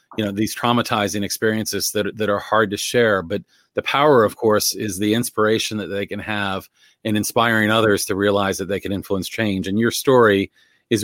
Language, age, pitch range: English, 40-59, 100-115 Hz